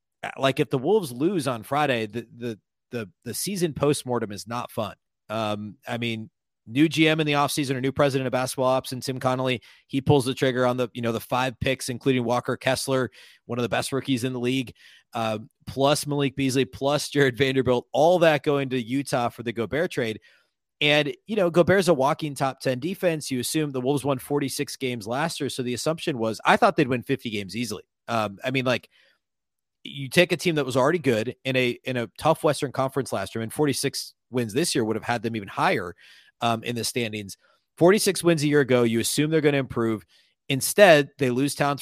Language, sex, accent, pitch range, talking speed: English, male, American, 120-145 Hz, 215 wpm